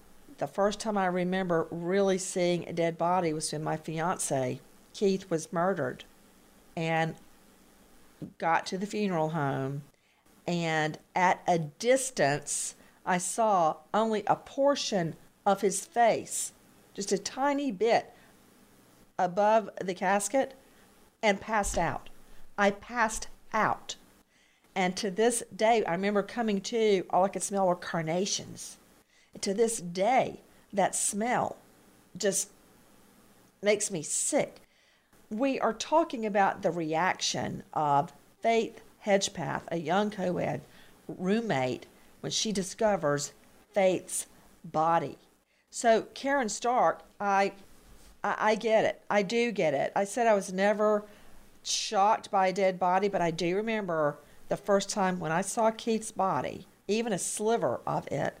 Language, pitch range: English, 175-215 Hz